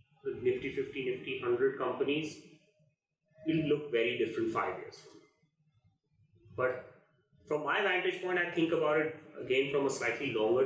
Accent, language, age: native, Hindi, 30-49